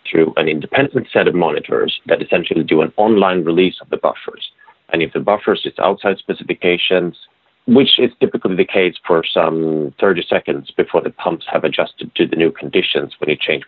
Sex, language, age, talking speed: male, English, 40-59, 190 wpm